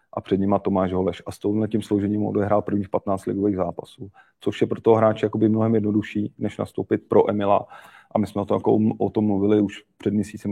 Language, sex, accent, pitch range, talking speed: Czech, male, native, 95-105 Hz, 210 wpm